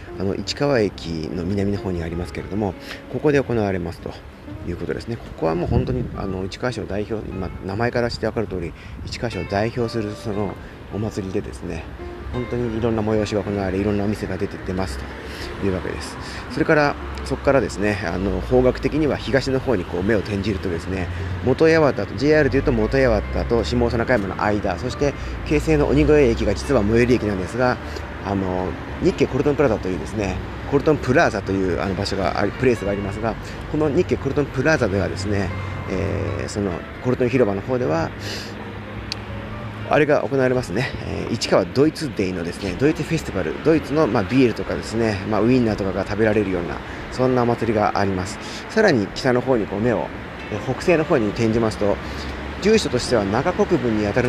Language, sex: Japanese, male